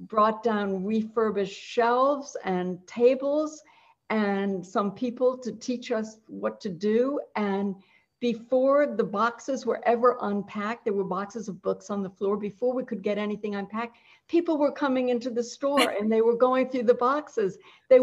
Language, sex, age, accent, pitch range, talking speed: English, female, 60-79, American, 195-240 Hz, 165 wpm